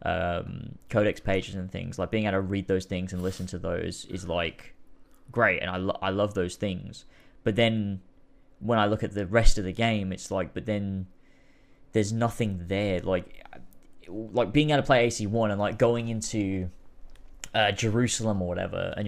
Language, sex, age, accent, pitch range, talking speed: English, male, 10-29, British, 95-110 Hz, 190 wpm